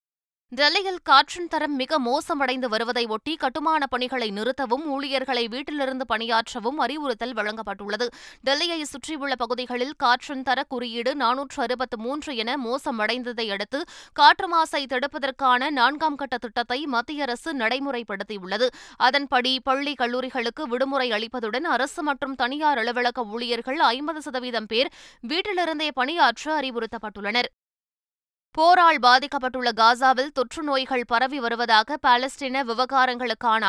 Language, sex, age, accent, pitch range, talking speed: Tamil, female, 20-39, native, 235-280 Hz, 105 wpm